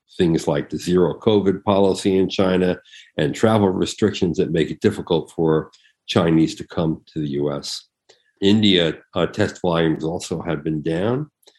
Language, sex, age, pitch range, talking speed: English, male, 50-69, 85-105 Hz, 155 wpm